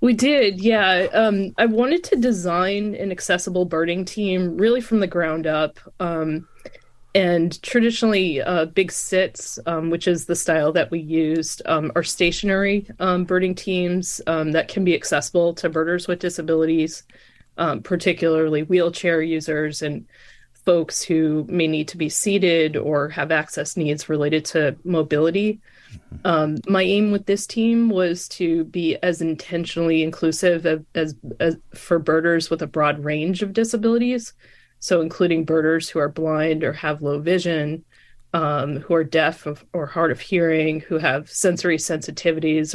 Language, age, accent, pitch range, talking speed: English, 20-39, American, 155-180 Hz, 155 wpm